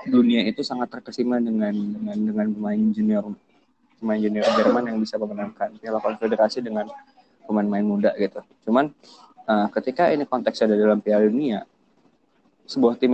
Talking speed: 145 wpm